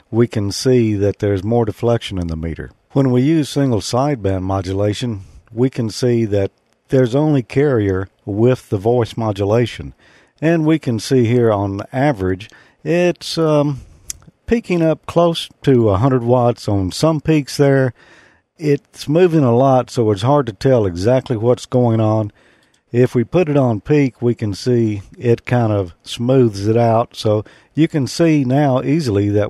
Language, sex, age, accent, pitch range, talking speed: English, male, 50-69, American, 105-135 Hz, 165 wpm